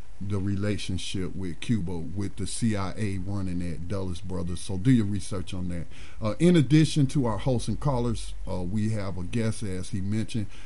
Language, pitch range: English, 95-115 Hz